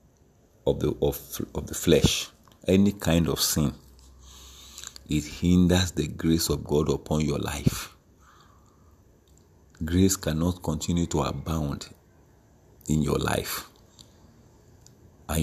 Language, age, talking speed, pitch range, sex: English, 50-69, 110 wpm, 75-85 Hz, male